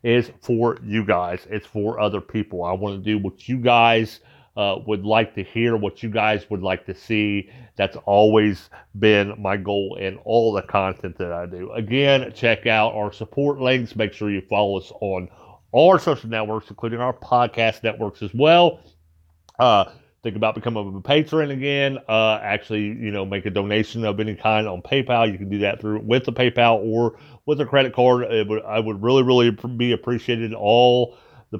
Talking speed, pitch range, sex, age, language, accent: 195 wpm, 105-120 Hz, male, 40-59, English, American